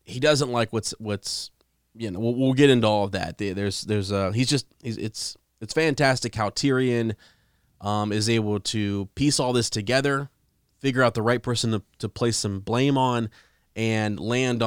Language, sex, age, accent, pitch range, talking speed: English, male, 20-39, American, 100-125 Hz, 190 wpm